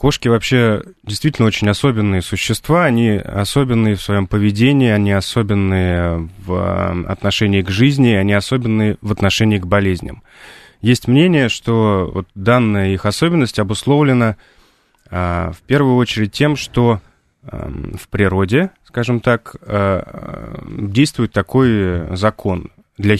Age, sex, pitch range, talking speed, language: 20-39, male, 100-125 Hz, 110 wpm, Russian